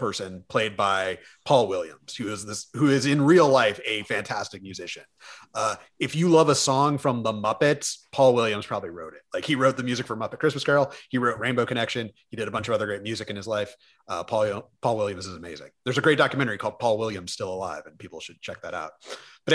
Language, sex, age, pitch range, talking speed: English, male, 30-49, 110-145 Hz, 235 wpm